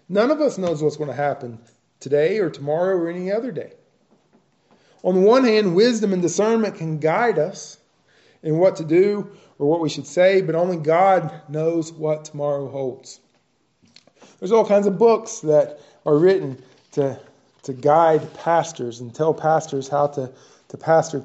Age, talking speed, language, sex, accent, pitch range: 20-39, 170 wpm, English, male, American, 145-185 Hz